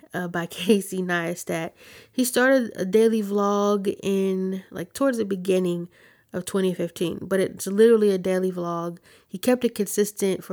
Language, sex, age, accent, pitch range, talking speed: English, female, 20-39, American, 175-215 Hz, 155 wpm